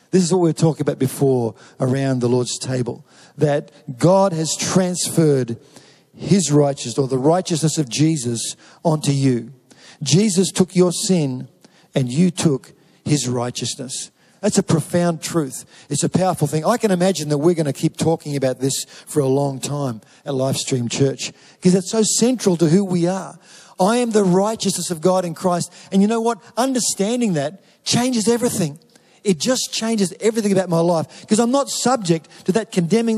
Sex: male